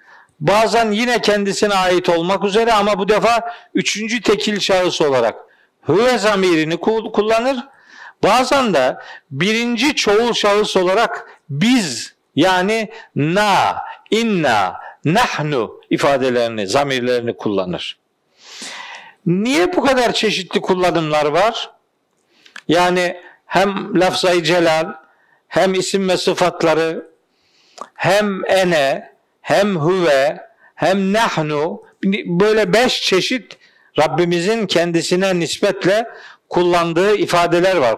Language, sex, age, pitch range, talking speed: Turkish, male, 50-69, 175-225 Hz, 95 wpm